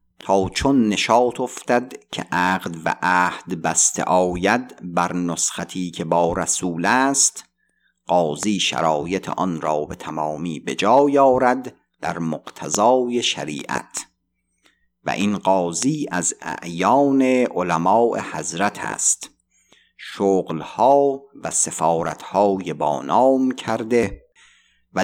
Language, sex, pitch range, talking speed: Persian, male, 90-125 Hz, 100 wpm